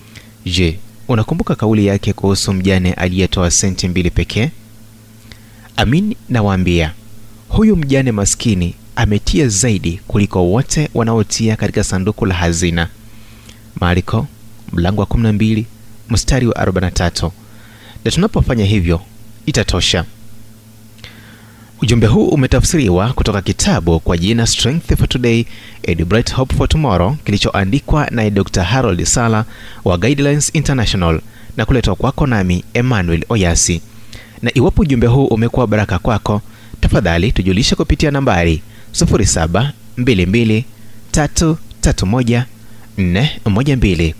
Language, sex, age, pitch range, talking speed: Swahili, male, 30-49, 95-120 Hz, 105 wpm